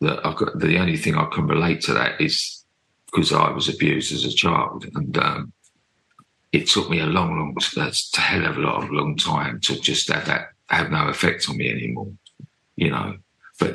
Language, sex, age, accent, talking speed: English, male, 40-59, British, 205 wpm